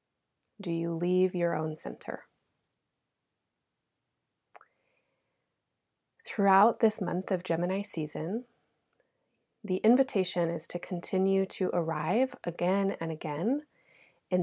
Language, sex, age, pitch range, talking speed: English, female, 30-49, 165-210 Hz, 95 wpm